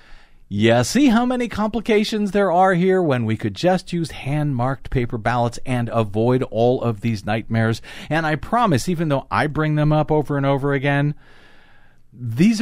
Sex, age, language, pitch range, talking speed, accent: male, 50-69, English, 120-180 Hz, 170 wpm, American